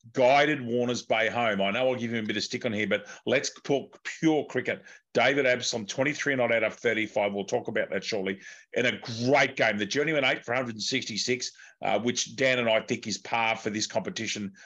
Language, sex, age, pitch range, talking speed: English, male, 40-59, 110-140 Hz, 220 wpm